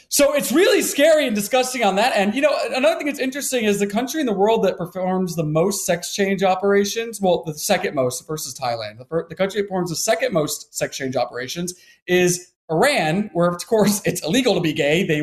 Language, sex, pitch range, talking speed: English, male, 155-210 Hz, 225 wpm